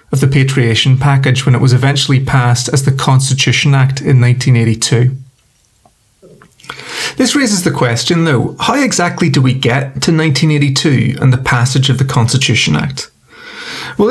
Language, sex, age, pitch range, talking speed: English, male, 30-49, 130-160 Hz, 150 wpm